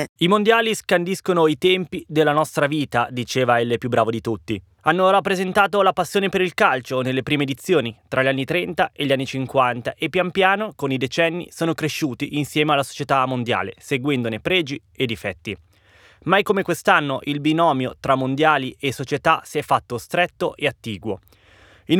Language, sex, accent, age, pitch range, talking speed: Italian, male, native, 20-39, 130-170 Hz, 175 wpm